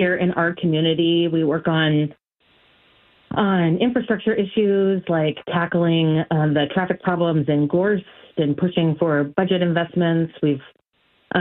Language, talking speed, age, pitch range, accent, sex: English, 125 wpm, 30-49, 160-205 Hz, American, female